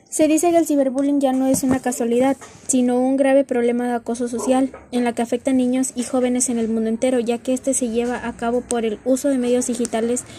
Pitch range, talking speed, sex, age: 230-265 Hz, 245 wpm, female, 20-39